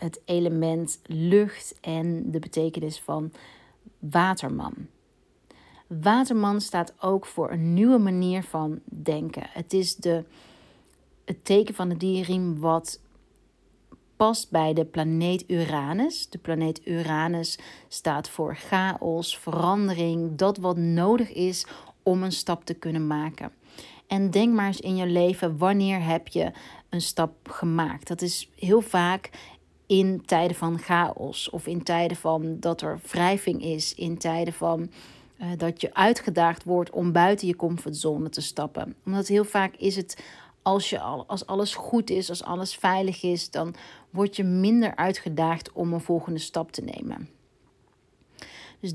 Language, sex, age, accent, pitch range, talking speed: Dutch, female, 40-59, Dutch, 165-190 Hz, 145 wpm